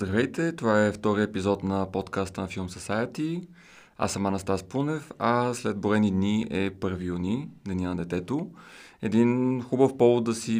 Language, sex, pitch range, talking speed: Bulgarian, male, 95-120 Hz, 165 wpm